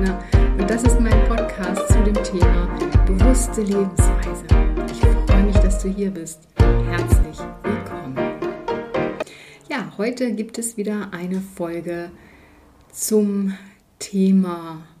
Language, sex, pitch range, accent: German, female, 170-205 Hz, German